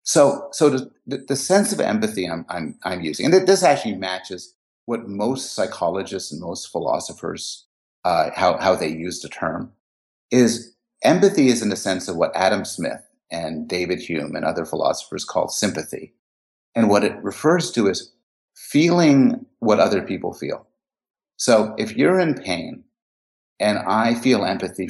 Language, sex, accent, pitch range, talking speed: English, male, American, 95-130 Hz, 160 wpm